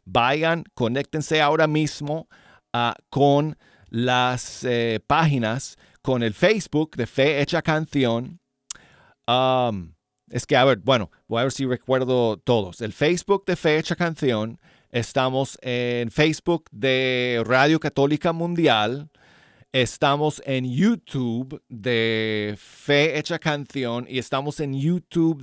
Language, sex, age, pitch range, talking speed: Spanish, male, 40-59, 115-150 Hz, 120 wpm